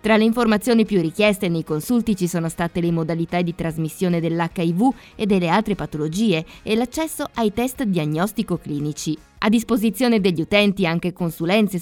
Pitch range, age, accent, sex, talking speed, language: 170-225 Hz, 20-39, native, female, 150 wpm, Italian